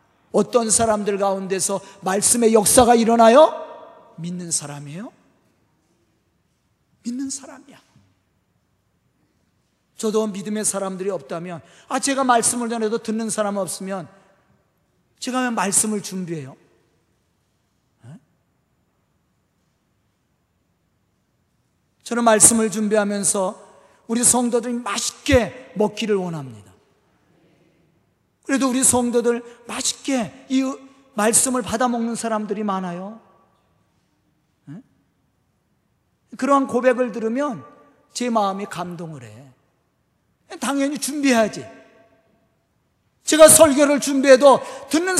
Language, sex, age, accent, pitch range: Korean, male, 40-59, native, 195-265 Hz